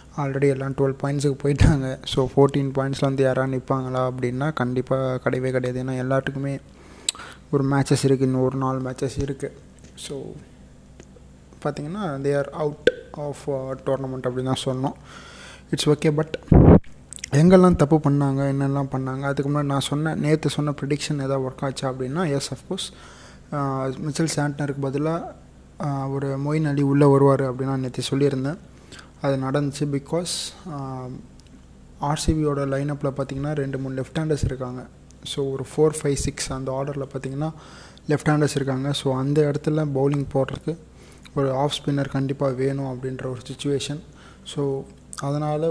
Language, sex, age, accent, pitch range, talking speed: Tamil, male, 20-39, native, 130-145 Hz, 135 wpm